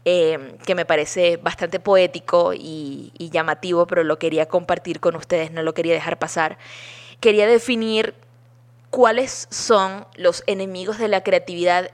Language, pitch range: Spanish, 170-200 Hz